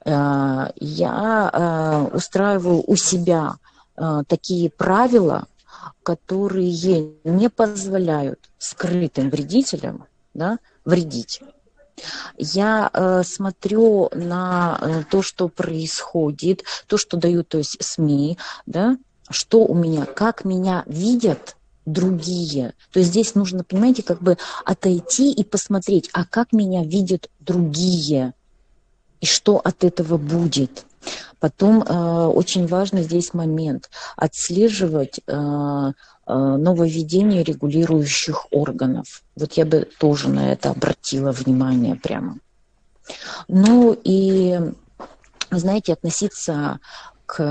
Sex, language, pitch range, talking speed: female, Russian, 150-195 Hz, 90 wpm